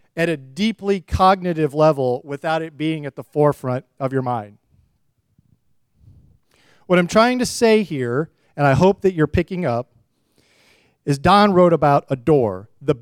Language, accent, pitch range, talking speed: English, American, 140-205 Hz, 155 wpm